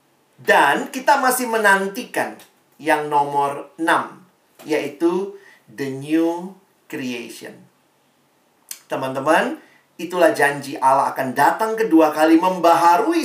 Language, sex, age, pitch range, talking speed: Indonesian, male, 40-59, 150-225 Hz, 90 wpm